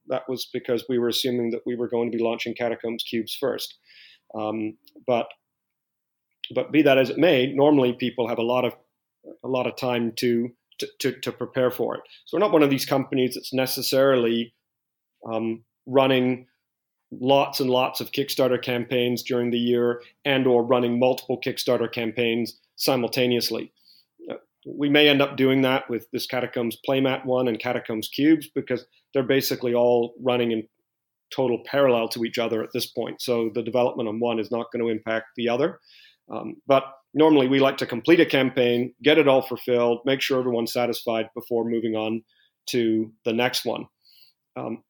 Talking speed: 180 wpm